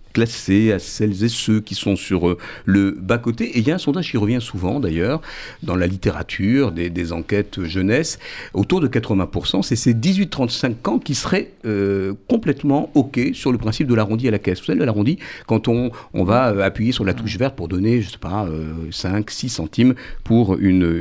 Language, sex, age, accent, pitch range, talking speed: French, male, 50-69, French, 90-120 Hz, 200 wpm